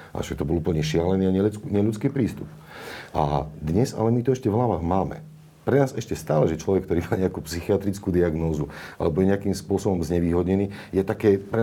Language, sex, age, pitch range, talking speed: Slovak, male, 40-59, 80-115 Hz, 190 wpm